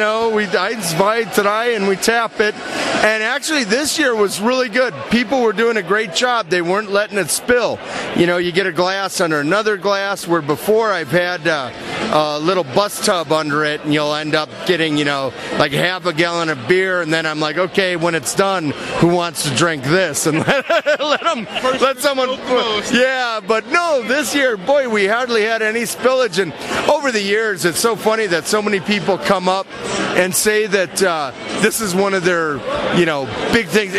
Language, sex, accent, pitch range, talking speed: English, male, American, 170-220 Hz, 200 wpm